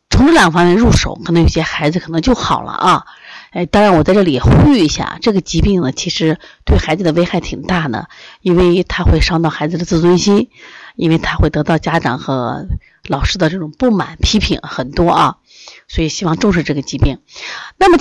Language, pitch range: Chinese, 160-225 Hz